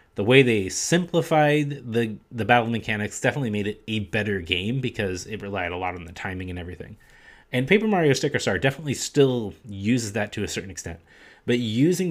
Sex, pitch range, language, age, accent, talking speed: male, 100-130 Hz, English, 30-49, American, 195 wpm